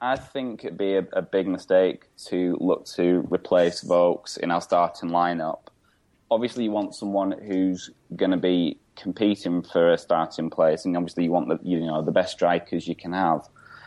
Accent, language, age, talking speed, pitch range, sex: British, English, 20-39, 185 wpm, 85-100 Hz, male